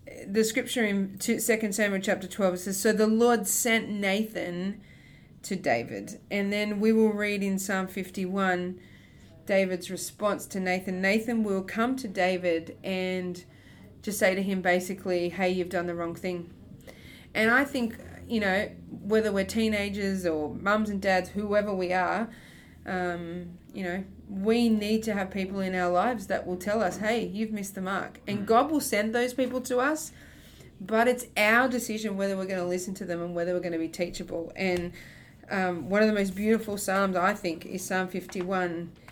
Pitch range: 185-220 Hz